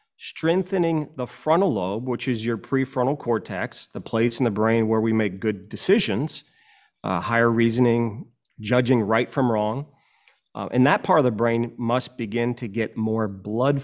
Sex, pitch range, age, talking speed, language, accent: male, 110-135 Hz, 40-59, 170 wpm, English, American